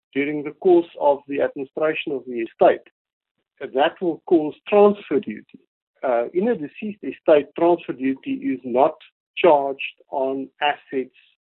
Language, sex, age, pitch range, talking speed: English, male, 50-69, 130-190 Hz, 135 wpm